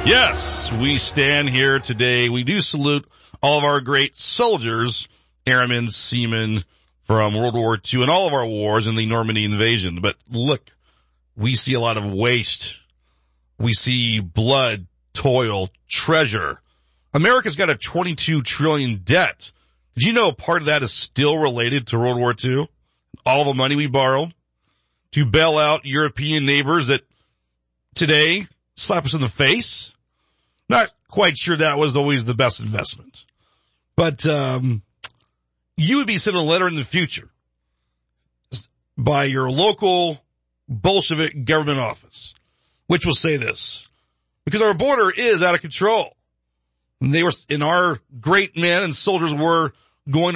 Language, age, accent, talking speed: English, 40-59, American, 150 wpm